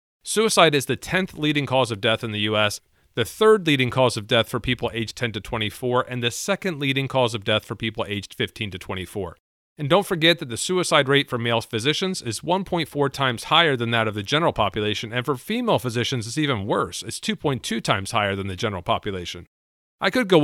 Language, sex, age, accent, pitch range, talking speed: English, male, 40-59, American, 115-155 Hz, 215 wpm